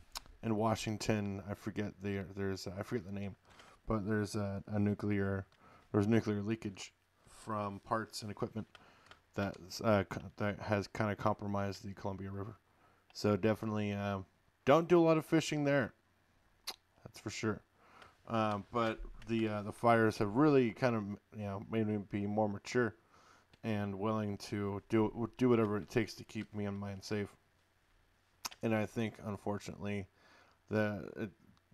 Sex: male